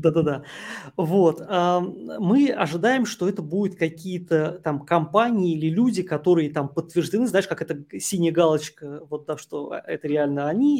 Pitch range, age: 150-195 Hz, 20-39